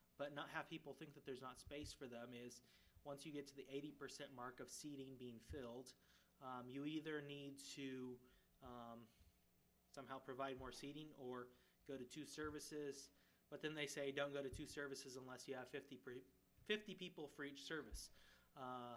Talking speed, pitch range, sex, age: 180 wpm, 95-140 Hz, male, 30-49